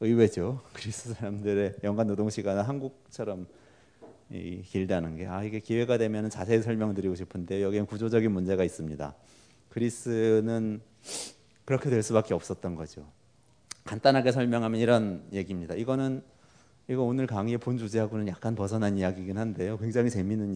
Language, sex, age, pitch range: Korean, male, 30-49, 95-120 Hz